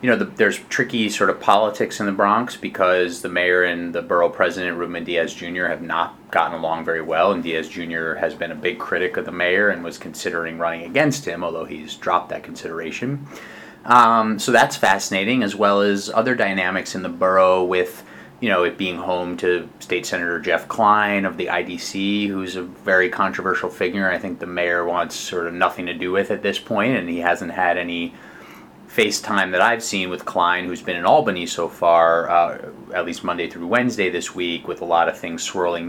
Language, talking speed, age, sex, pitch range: English, 205 wpm, 30-49, male, 90-110 Hz